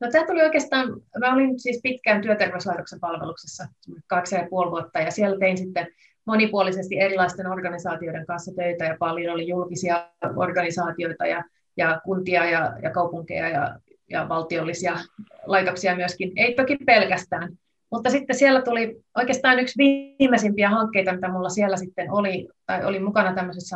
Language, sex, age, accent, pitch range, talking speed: Finnish, female, 30-49, native, 175-210 Hz, 145 wpm